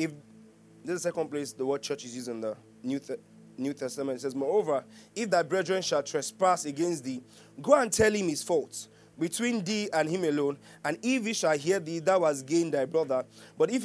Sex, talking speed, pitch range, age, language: male, 210 wpm, 140-195 Hz, 30-49, English